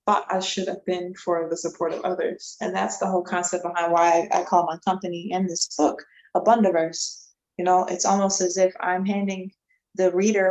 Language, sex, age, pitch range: English, female, 20-39, 175-200 Hz